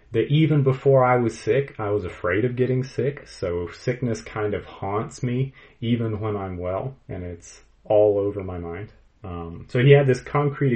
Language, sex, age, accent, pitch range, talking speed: English, male, 30-49, American, 90-125 Hz, 190 wpm